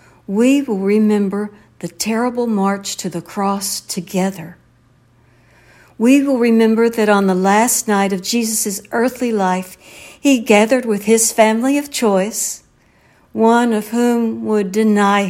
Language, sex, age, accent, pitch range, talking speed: English, female, 60-79, American, 185-235 Hz, 135 wpm